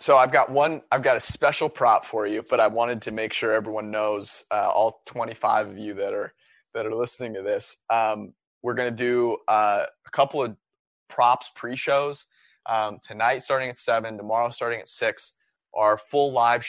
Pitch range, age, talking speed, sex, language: 110-135 Hz, 20-39, 200 wpm, male, English